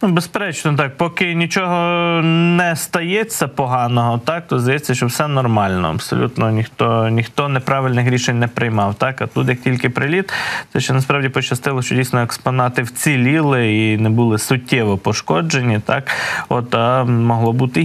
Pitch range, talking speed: 115-145 Hz, 150 wpm